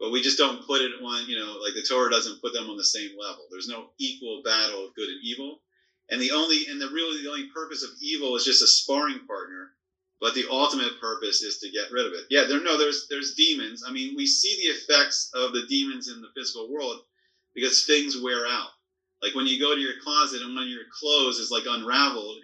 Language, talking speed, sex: English, 240 wpm, male